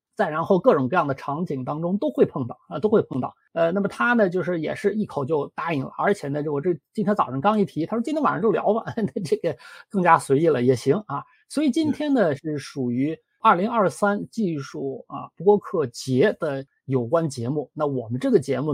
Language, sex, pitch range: Chinese, male, 140-215 Hz